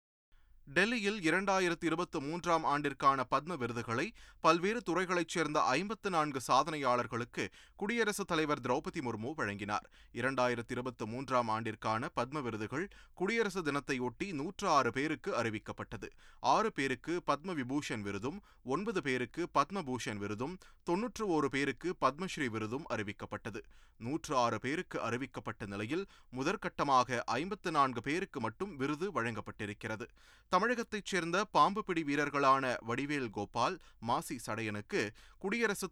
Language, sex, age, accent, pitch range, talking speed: Tamil, male, 30-49, native, 115-175 Hz, 100 wpm